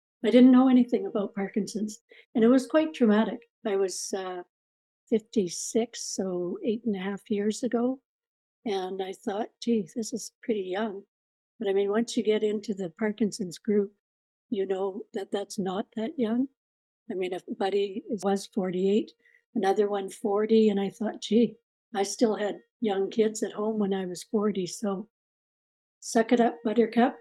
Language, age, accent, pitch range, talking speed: English, 60-79, American, 200-230 Hz, 170 wpm